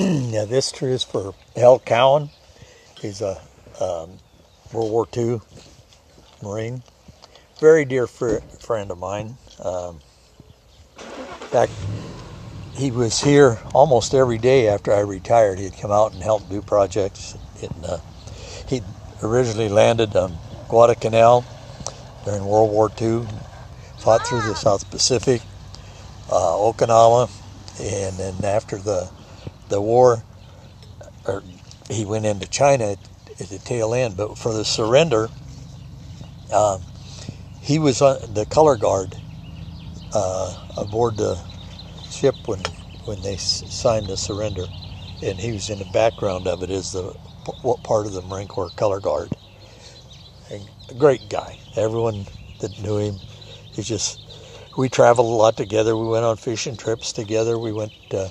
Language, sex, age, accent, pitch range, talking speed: English, male, 60-79, American, 100-120 Hz, 140 wpm